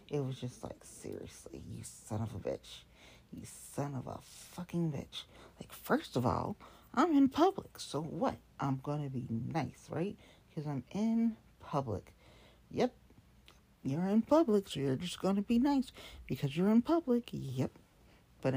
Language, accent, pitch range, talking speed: English, American, 155-235 Hz, 170 wpm